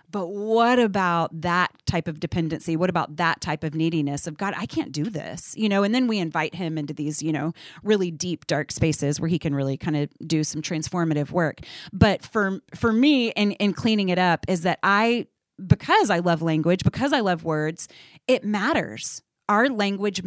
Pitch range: 170-220 Hz